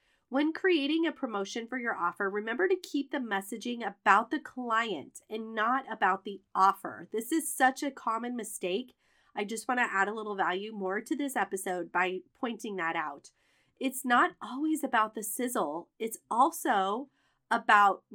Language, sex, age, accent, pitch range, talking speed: English, female, 30-49, American, 195-260 Hz, 165 wpm